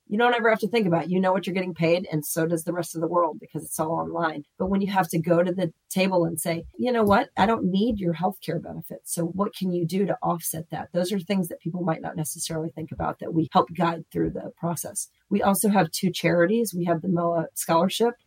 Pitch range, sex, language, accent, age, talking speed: 165-185 Hz, female, English, American, 40-59, 270 wpm